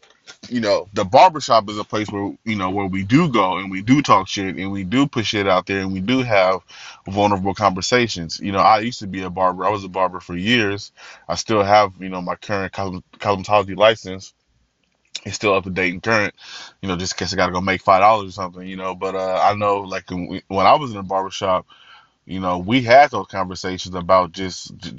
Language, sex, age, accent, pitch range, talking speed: English, male, 20-39, American, 95-105 Hz, 235 wpm